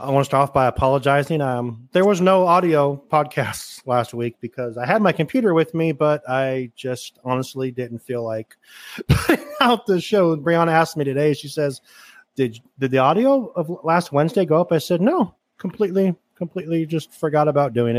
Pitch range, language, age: 120-160 Hz, English, 30-49